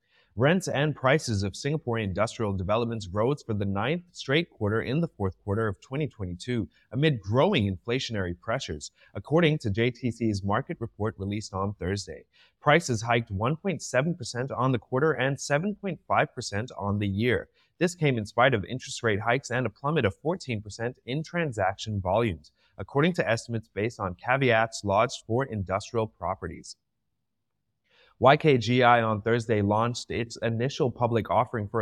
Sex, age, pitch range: male, 30-49, 105-135 Hz